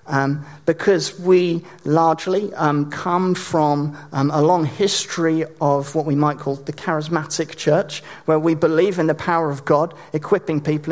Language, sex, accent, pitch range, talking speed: English, male, British, 150-185 Hz, 160 wpm